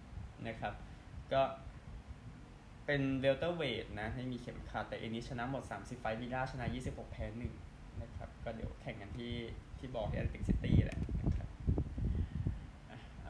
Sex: male